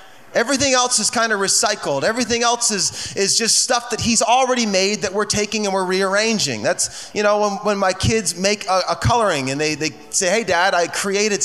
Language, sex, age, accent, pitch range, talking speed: English, male, 30-49, American, 155-215 Hz, 215 wpm